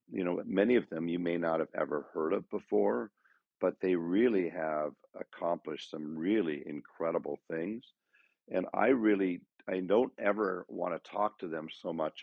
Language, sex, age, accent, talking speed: English, male, 50-69, American, 170 wpm